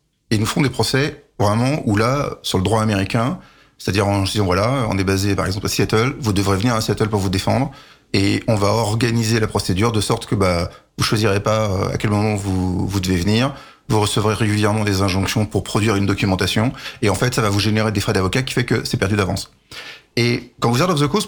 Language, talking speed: French, 235 wpm